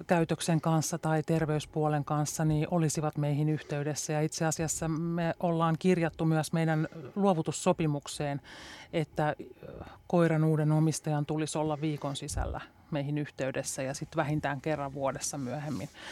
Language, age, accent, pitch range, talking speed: Finnish, 30-49, native, 145-170 Hz, 125 wpm